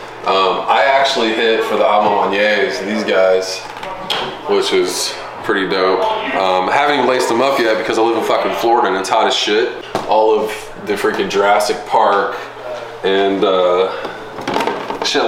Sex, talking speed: male, 155 wpm